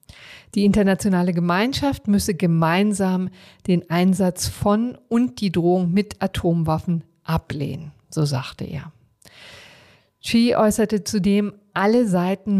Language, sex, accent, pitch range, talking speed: German, female, German, 155-190 Hz, 105 wpm